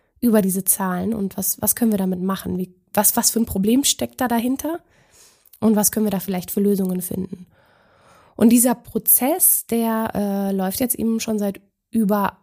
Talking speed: 190 wpm